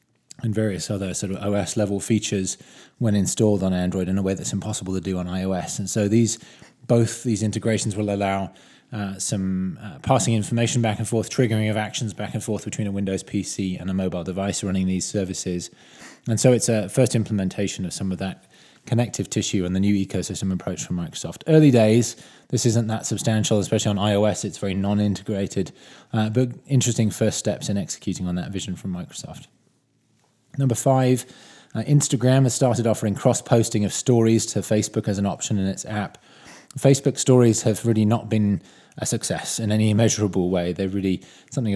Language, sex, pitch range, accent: English, male, 95-115 Hz, British